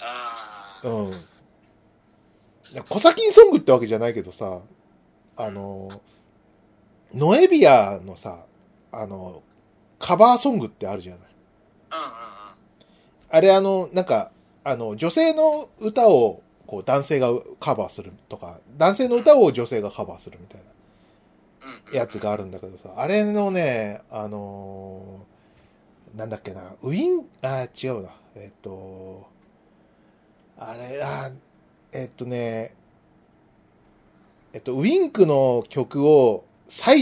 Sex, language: male, Japanese